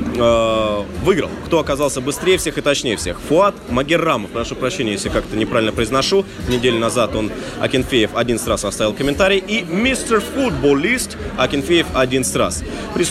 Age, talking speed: 20-39, 140 wpm